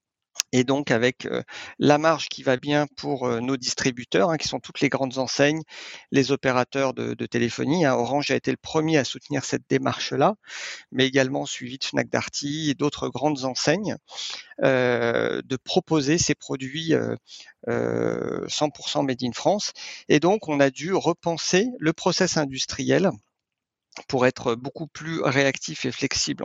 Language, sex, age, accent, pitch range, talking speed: French, male, 40-59, French, 130-155 Hz, 160 wpm